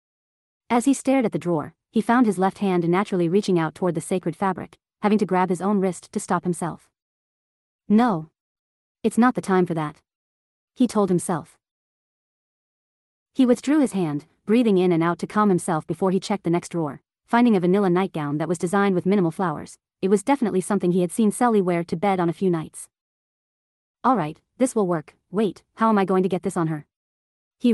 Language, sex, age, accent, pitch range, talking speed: English, female, 40-59, American, 170-210 Hz, 205 wpm